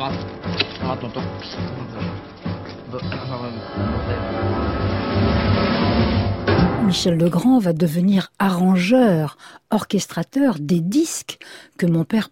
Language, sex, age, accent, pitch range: French, female, 60-79, French, 170-230 Hz